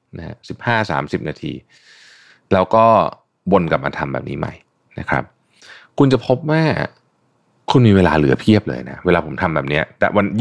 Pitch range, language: 80-115 Hz, Thai